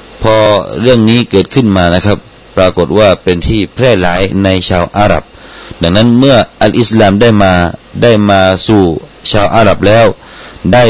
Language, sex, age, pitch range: Thai, male, 30-49, 90-115 Hz